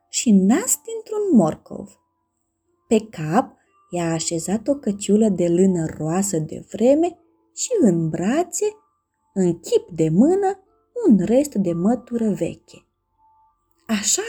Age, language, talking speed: 30-49, Romanian, 120 wpm